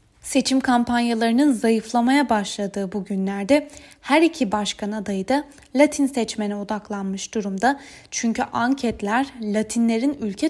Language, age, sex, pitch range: Turkish, 20-39, female, 205-265 Hz